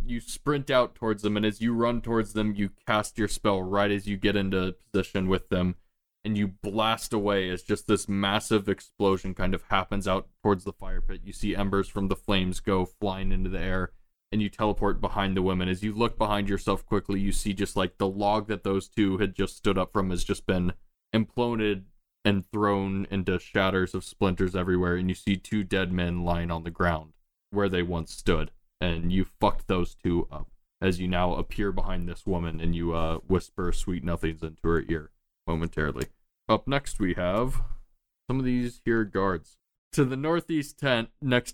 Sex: male